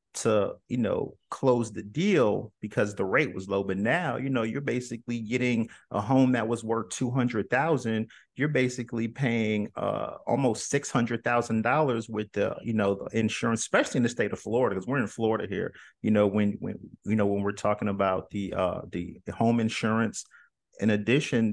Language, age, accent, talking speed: English, 40-59, American, 190 wpm